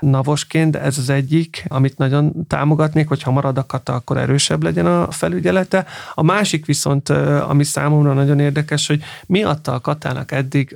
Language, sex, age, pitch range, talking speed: Hungarian, male, 30-49, 130-160 Hz, 160 wpm